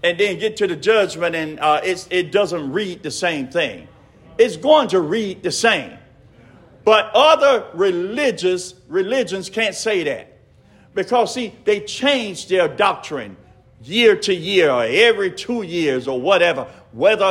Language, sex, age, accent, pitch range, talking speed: English, male, 50-69, American, 185-255 Hz, 155 wpm